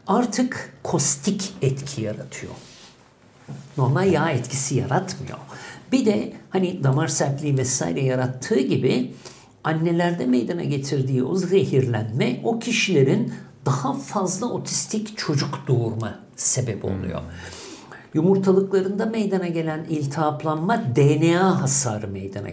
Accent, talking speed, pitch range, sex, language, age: native, 100 wpm, 130-175 Hz, male, Turkish, 60-79